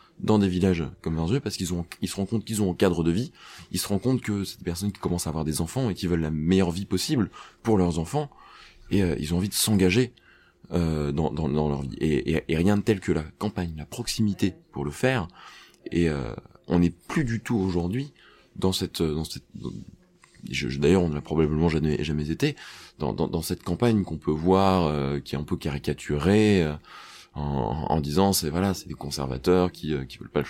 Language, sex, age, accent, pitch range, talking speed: French, male, 20-39, French, 80-105 Hz, 240 wpm